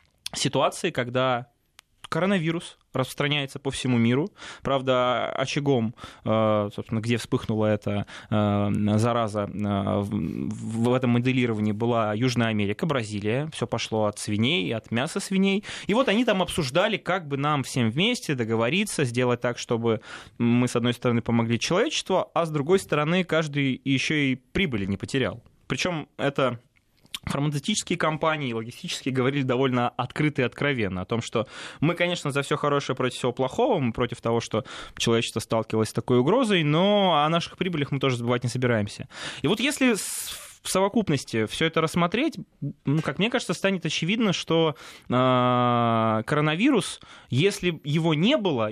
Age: 20-39